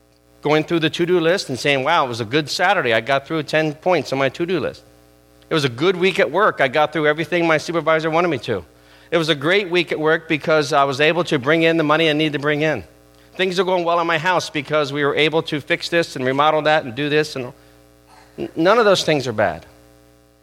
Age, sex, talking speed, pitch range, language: 40-59, male, 255 wpm, 110-160 Hz, English